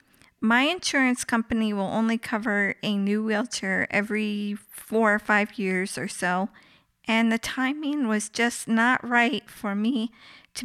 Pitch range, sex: 205-235 Hz, female